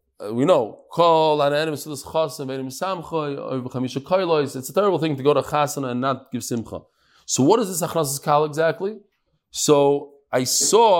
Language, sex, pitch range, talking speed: English, male, 140-180 Hz, 130 wpm